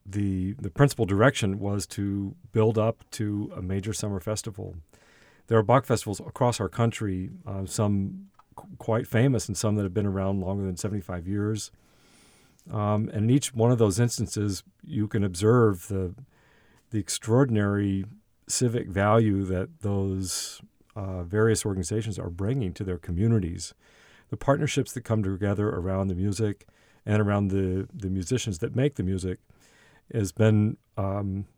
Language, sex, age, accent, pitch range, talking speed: English, male, 50-69, American, 100-115 Hz, 155 wpm